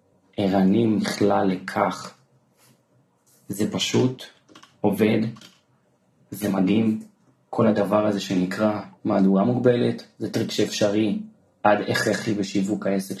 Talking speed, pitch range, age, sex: 110 wpm, 105-120 Hz, 30-49, male